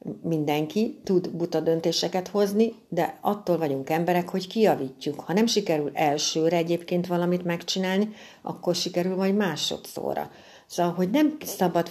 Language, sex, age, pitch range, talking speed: Hungarian, female, 60-79, 145-185 Hz, 130 wpm